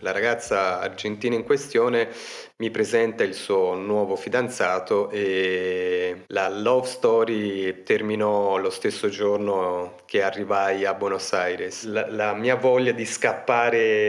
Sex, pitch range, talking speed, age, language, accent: male, 100-125 Hz, 130 wpm, 30-49, Italian, native